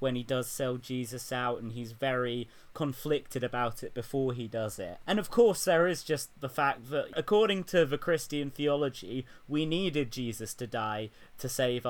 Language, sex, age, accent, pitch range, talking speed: English, male, 30-49, British, 115-145 Hz, 185 wpm